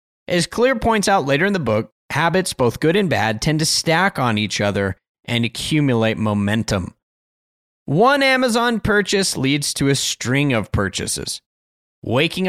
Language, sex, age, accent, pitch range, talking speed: English, male, 30-49, American, 110-170 Hz, 155 wpm